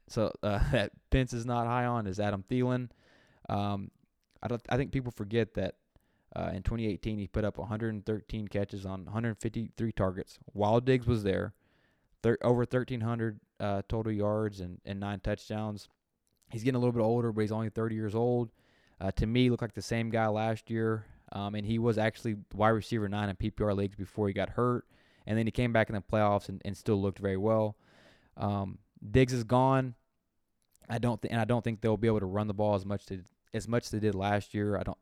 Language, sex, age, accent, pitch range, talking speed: English, male, 20-39, American, 100-115 Hz, 215 wpm